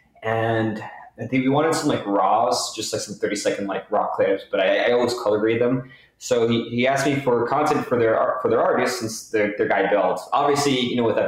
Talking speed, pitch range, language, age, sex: 225 wpm, 110-140 Hz, English, 20-39, male